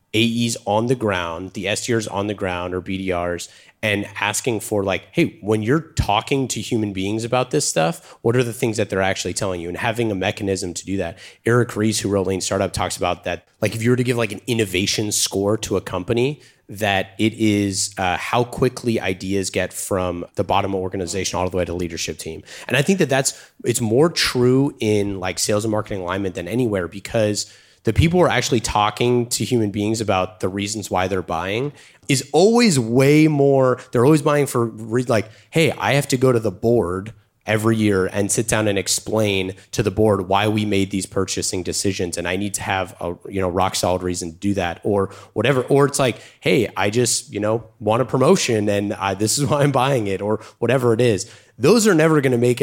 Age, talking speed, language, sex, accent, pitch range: 30-49, 220 wpm, English, male, American, 95-120 Hz